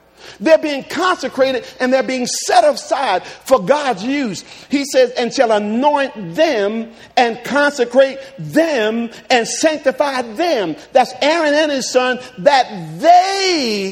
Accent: American